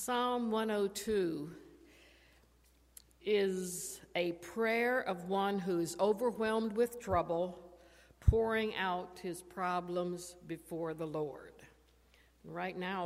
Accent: American